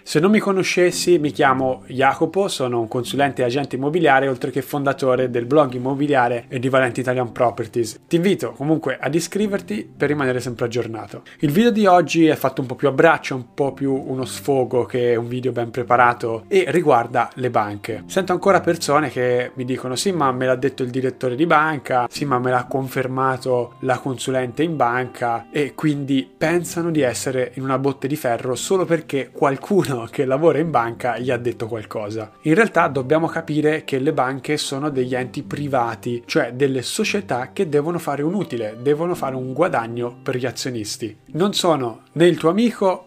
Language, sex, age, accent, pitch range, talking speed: Italian, male, 20-39, native, 125-155 Hz, 190 wpm